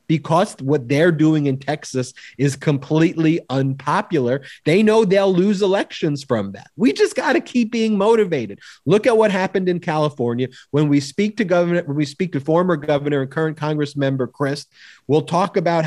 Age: 30-49